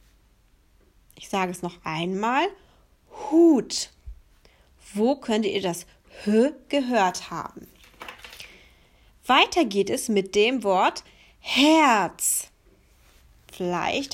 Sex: female